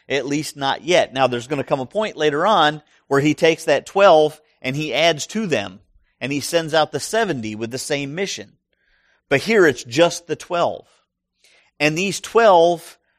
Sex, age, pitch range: male, 40-59, 130-165 Hz